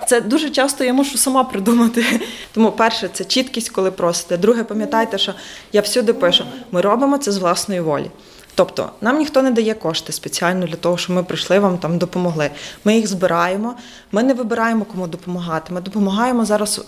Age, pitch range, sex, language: 20-39, 185-230 Hz, female, Ukrainian